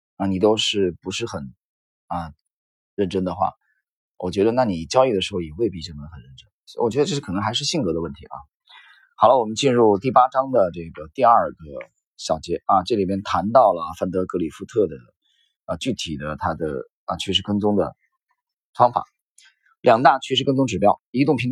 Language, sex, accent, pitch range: Chinese, male, native, 90-145 Hz